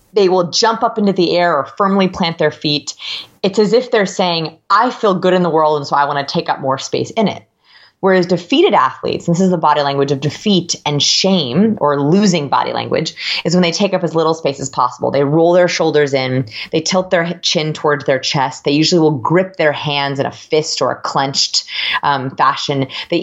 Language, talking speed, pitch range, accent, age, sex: English, 225 wpm, 145-205 Hz, American, 20-39, female